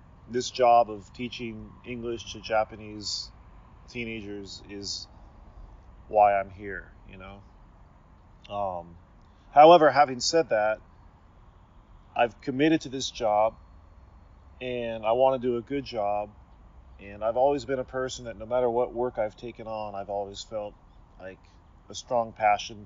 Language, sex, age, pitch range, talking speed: English, male, 30-49, 95-115 Hz, 140 wpm